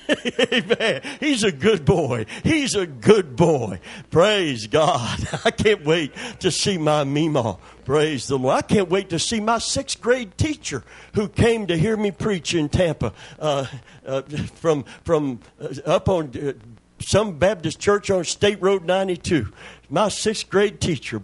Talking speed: 160 wpm